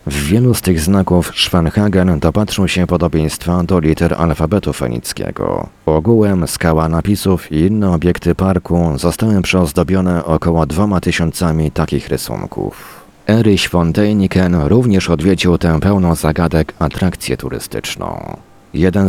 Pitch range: 80-95 Hz